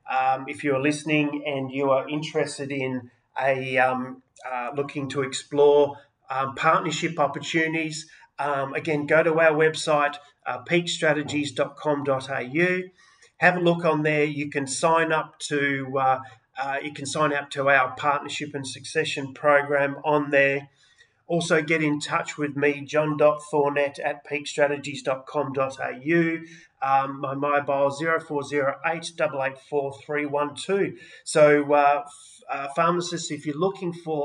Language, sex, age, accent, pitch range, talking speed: English, male, 30-49, Australian, 135-155 Hz, 130 wpm